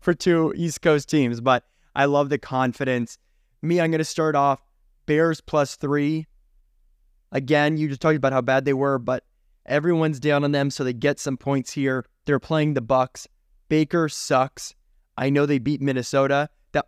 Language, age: English, 20-39